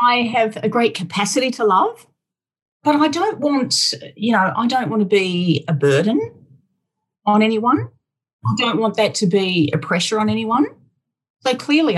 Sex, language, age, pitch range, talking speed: female, English, 40-59, 155-215 Hz, 170 wpm